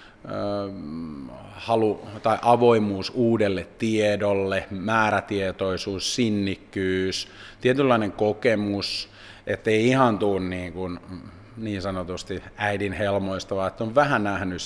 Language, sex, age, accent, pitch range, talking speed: Finnish, male, 30-49, native, 95-115 Hz, 85 wpm